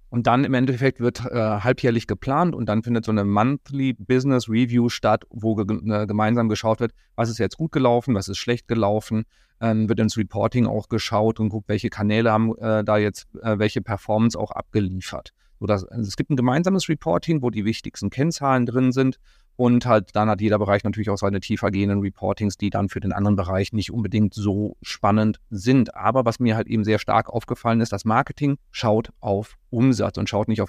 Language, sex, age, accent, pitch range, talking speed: German, male, 30-49, German, 105-120 Hz, 195 wpm